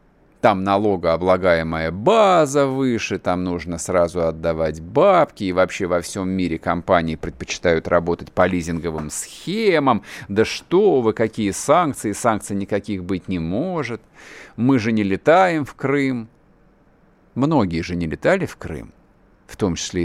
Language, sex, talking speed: Russian, male, 135 wpm